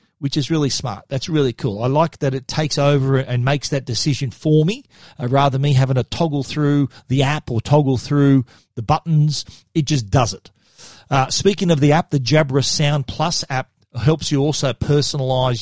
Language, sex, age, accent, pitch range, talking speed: English, male, 40-59, Australian, 125-150 Hz, 200 wpm